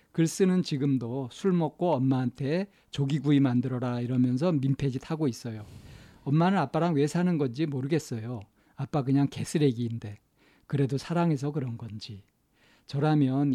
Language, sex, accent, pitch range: Korean, male, native, 130-170 Hz